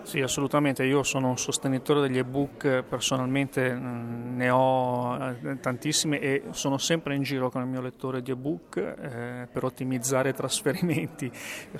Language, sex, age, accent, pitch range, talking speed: Italian, male, 40-59, native, 130-150 Hz, 145 wpm